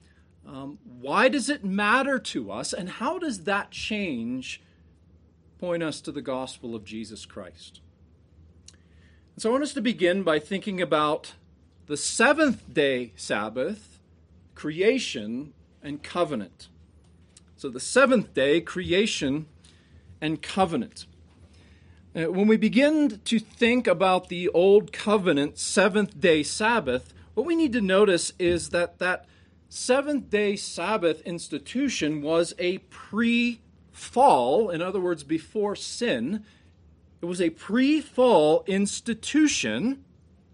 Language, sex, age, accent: English, male, 40-59, American